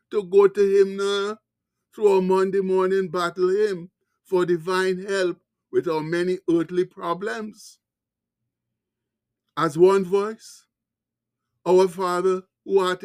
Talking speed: 120 wpm